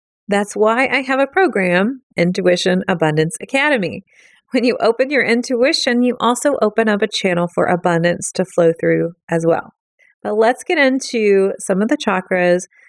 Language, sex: English, female